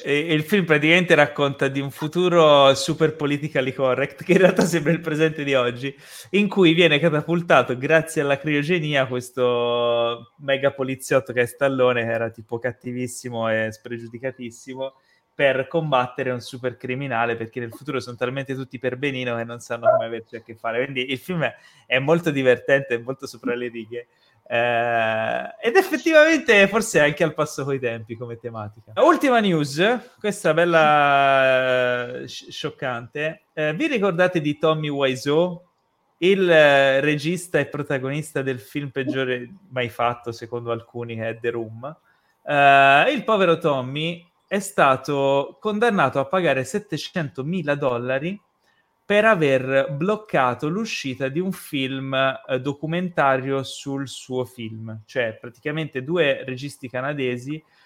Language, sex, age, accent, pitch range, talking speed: Italian, male, 20-39, native, 125-160 Hz, 140 wpm